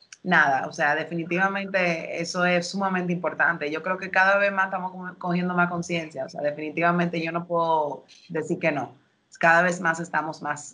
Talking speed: 180 wpm